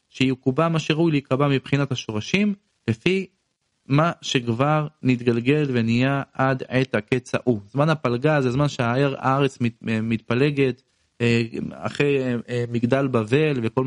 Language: Hebrew